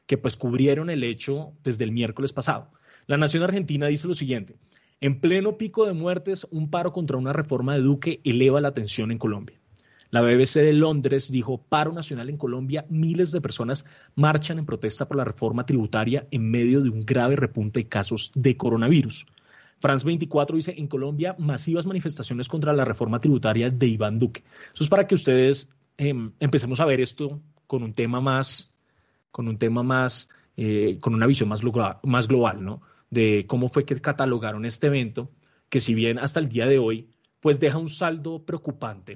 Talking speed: 185 wpm